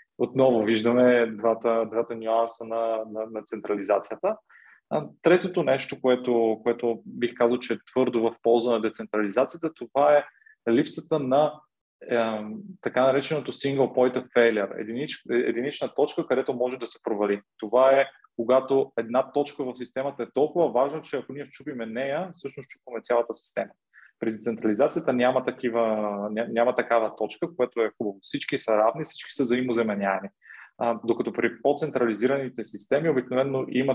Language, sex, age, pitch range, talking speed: Bulgarian, male, 20-39, 110-135 Hz, 145 wpm